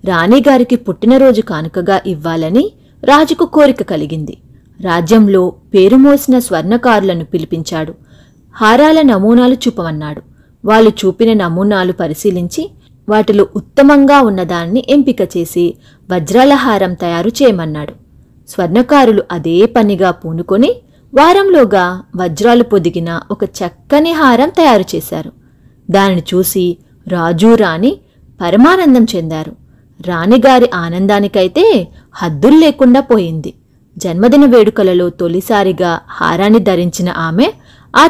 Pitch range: 180-260 Hz